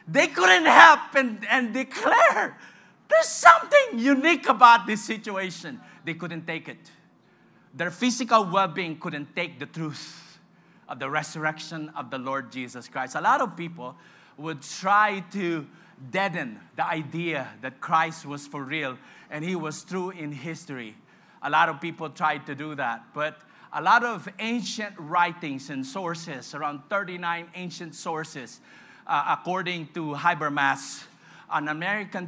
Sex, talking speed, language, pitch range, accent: male, 145 wpm, English, 155-215 Hz, Filipino